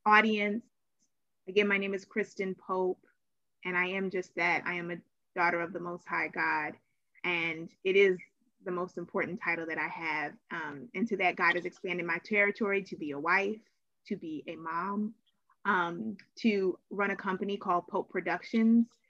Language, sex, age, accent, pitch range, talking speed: English, female, 20-39, American, 185-215 Hz, 175 wpm